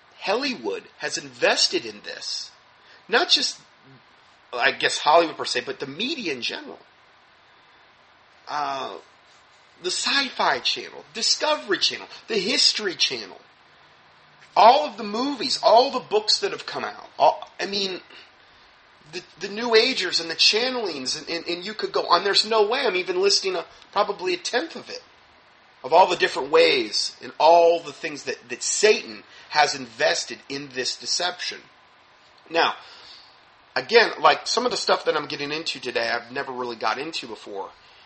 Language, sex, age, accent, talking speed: English, male, 40-59, American, 155 wpm